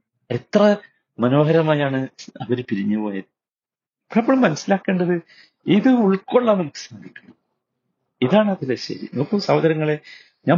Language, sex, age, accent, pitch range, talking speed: Malayalam, male, 50-69, native, 125-170 Hz, 95 wpm